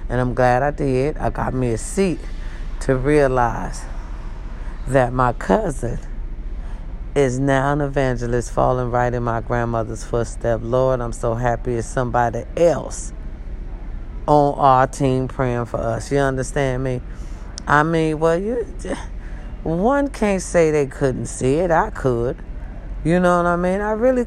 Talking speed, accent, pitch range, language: 150 wpm, American, 120-170 Hz, English